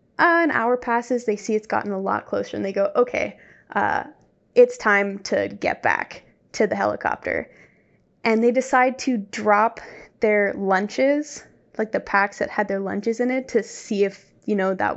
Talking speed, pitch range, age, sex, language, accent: 185 wpm, 205-240 Hz, 10-29, female, English, American